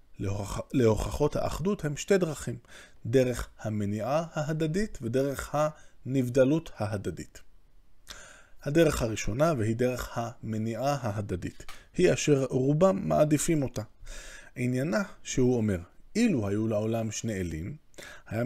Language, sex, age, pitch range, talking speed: Hebrew, male, 20-39, 110-145 Hz, 100 wpm